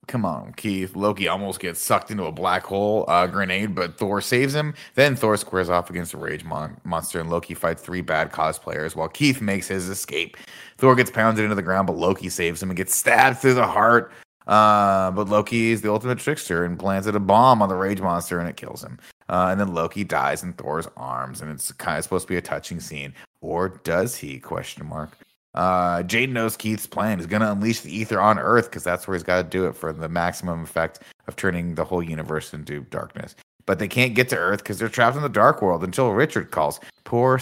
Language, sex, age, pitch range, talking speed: English, male, 30-49, 90-115 Hz, 230 wpm